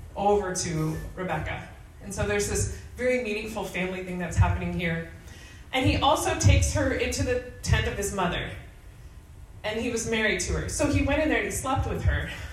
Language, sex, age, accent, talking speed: English, female, 20-39, American, 190 wpm